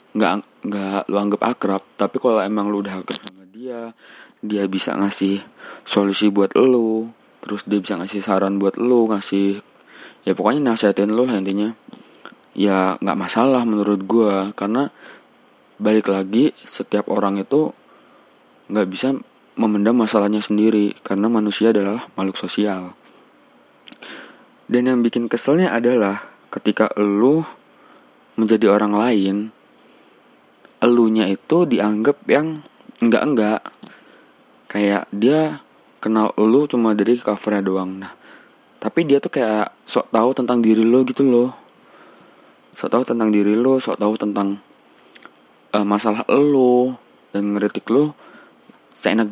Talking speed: 125 wpm